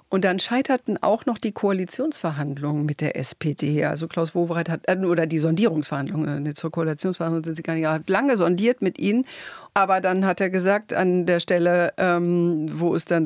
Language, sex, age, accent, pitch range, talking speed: German, female, 50-69, German, 160-185 Hz, 180 wpm